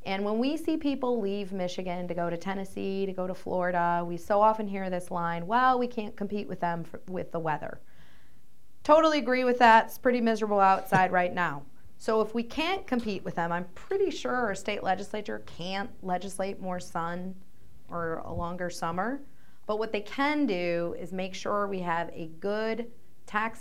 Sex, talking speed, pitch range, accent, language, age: female, 190 wpm, 170-225 Hz, American, English, 30-49